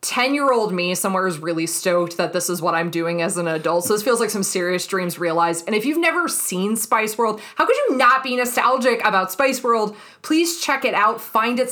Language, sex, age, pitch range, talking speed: English, female, 20-39, 175-215 Hz, 230 wpm